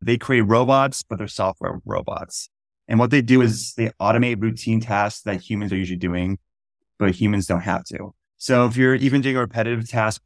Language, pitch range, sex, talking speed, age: English, 100-125 Hz, male, 200 wpm, 20-39